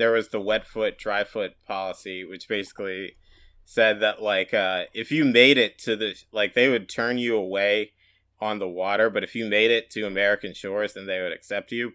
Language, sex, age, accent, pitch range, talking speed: English, male, 30-49, American, 100-115 Hz, 210 wpm